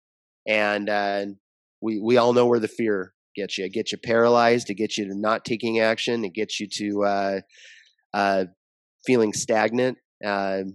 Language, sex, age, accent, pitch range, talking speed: English, male, 30-49, American, 100-115 Hz, 175 wpm